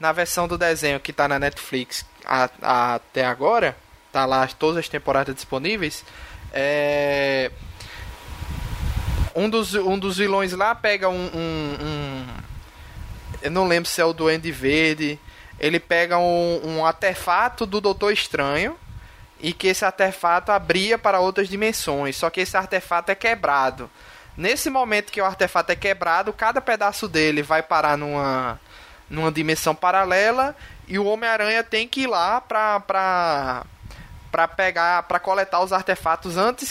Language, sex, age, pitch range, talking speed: Portuguese, male, 20-39, 145-195 Hz, 140 wpm